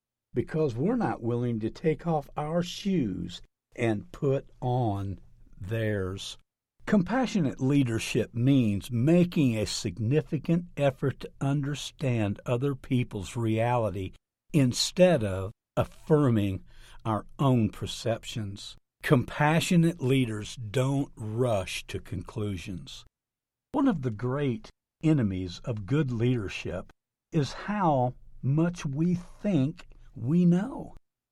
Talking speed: 100 wpm